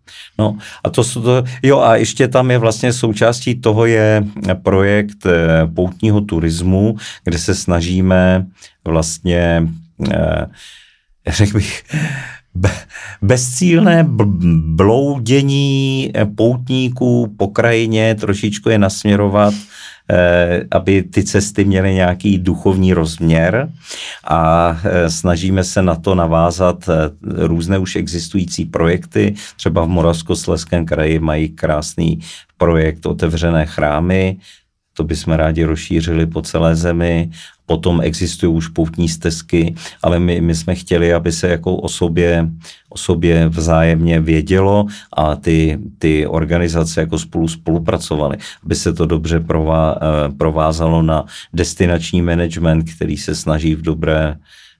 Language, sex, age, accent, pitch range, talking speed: Czech, male, 40-59, native, 80-100 Hz, 115 wpm